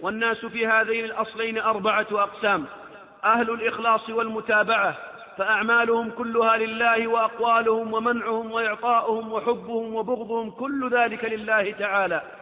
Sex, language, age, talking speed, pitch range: male, Arabic, 40-59, 100 wpm, 215-235 Hz